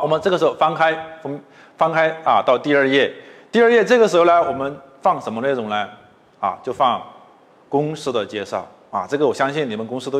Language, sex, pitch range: Chinese, male, 130-195 Hz